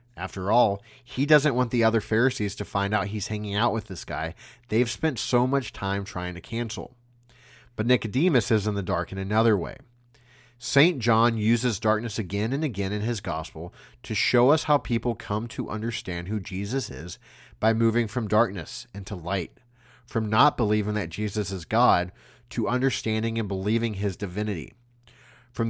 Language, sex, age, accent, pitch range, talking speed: English, male, 30-49, American, 100-125 Hz, 175 wpm